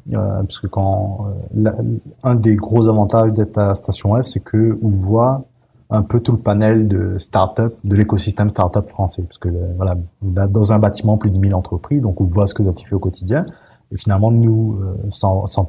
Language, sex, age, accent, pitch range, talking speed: French, male, 20-39, French, 95-115 Hz, 205 wpm